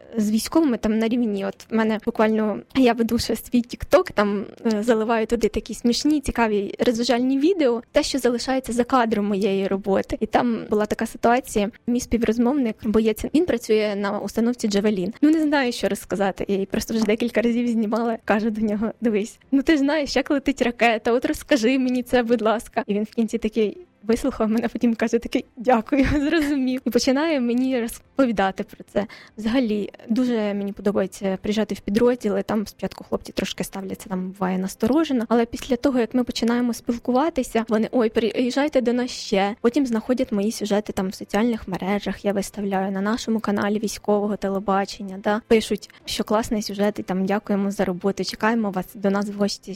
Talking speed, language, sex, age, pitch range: 175 wpm, Ukrainian, female, 20-39, 205-245 Hz